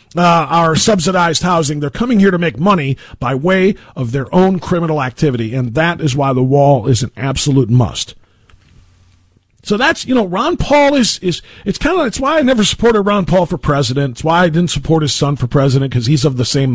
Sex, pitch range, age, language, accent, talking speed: male, 130-170 Hz, 40-59, English, American, 220 wpm